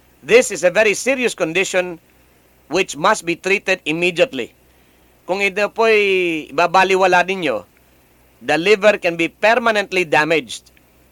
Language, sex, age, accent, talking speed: English, male, 50-69, Filipino, 120 wpm